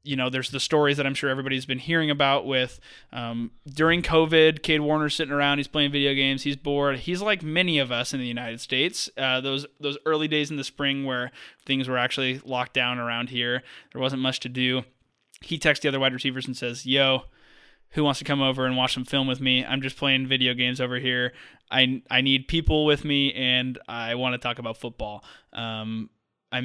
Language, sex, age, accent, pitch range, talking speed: English, male, 20-39, American, 120-140 Hz, 220 wpm